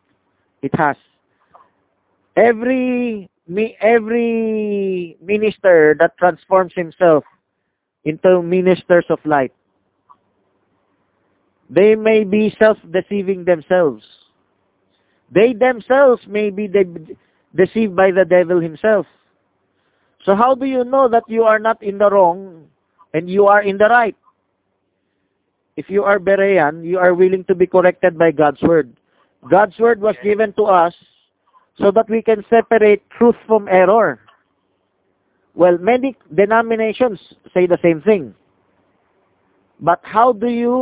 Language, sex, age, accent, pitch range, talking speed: English, male, 50-69, Filipino, 150-220 Hz, 120 wpm